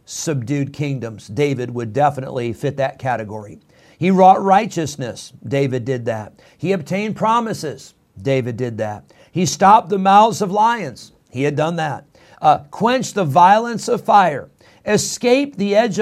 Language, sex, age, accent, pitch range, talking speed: English, male, 50-69, American, 135-190 Hz, 145 wpm